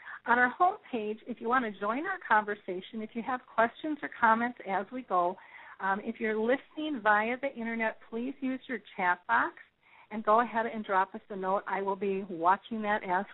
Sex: female